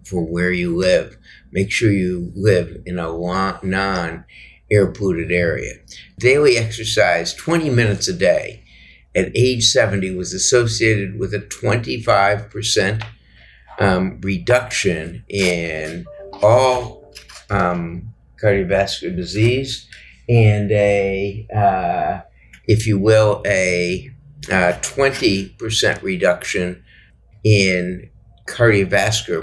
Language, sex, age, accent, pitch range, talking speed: English, male, 50-69, American, 90-120 Hz, 90 wpm